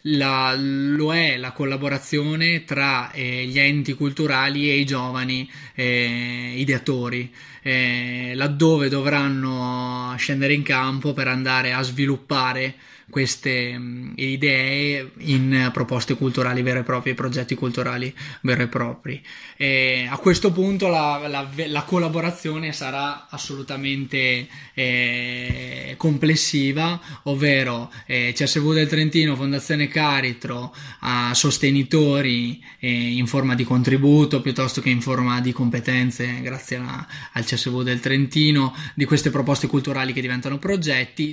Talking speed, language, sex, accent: 120 wpm, Italian, male, native